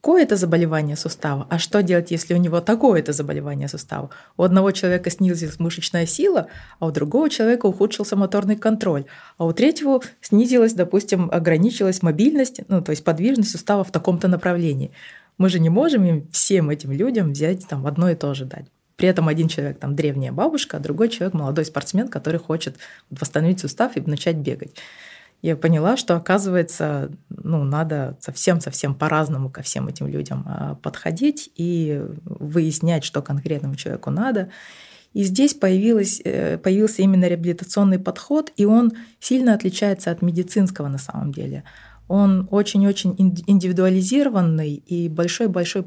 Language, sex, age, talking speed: Russian, female, 20-39, 150 wpm